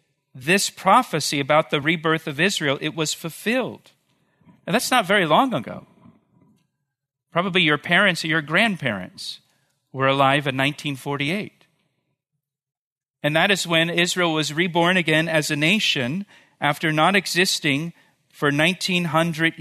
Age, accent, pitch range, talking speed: 50-69, American, 140-170 Hz, 130 wpm